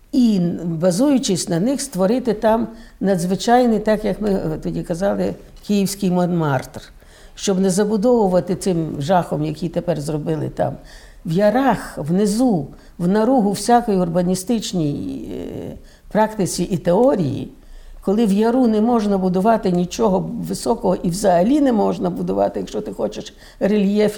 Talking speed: 125 wpm